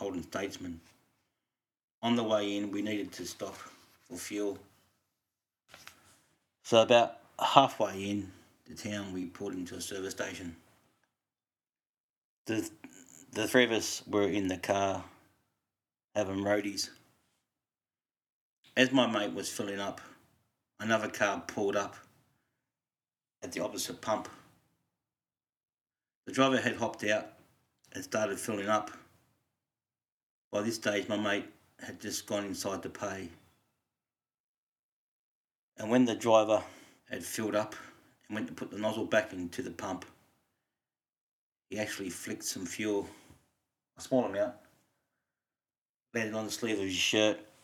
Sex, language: male, English